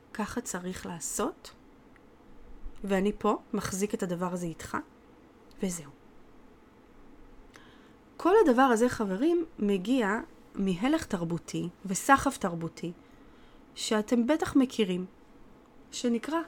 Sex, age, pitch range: female, 30-49, 190-255 Hz